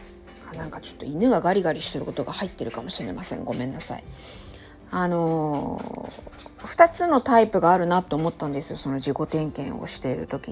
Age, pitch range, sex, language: 50-69, 165-235 Hz, female, Japanese